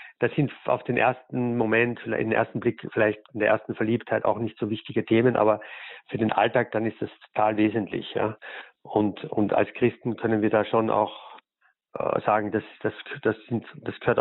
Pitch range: 100-115 Hz